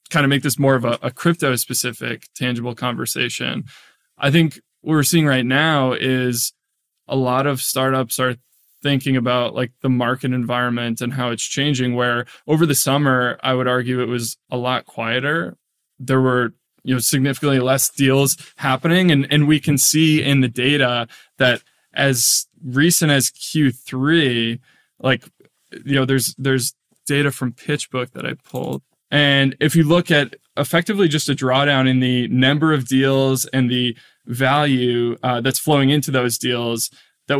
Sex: male